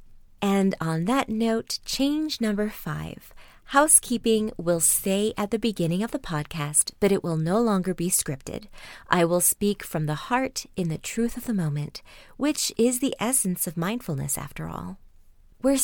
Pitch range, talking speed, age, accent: 170-240 Hz, 165 wpm, 30-49, American